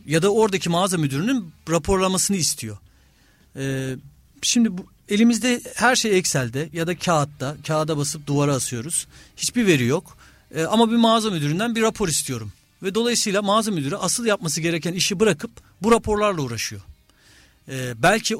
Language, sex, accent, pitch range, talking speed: Turkish, male, native, 135-185 Hz, 150 wpm